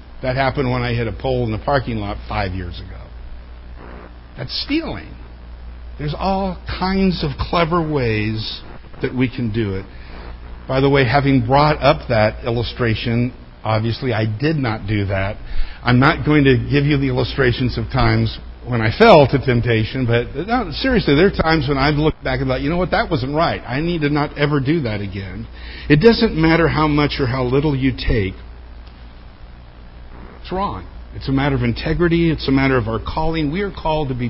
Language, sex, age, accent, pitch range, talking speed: English, male, 50-69, American, 105-150 Hz, 190 wpm